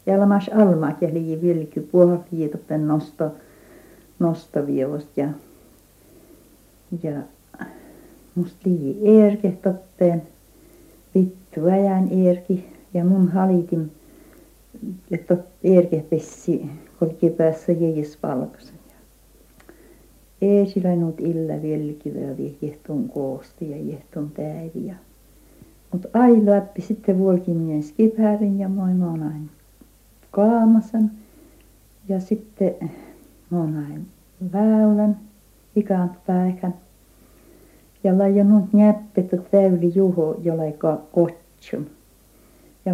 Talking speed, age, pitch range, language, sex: 80 wpm, 60-79, 160-200 Hz, Finnish, female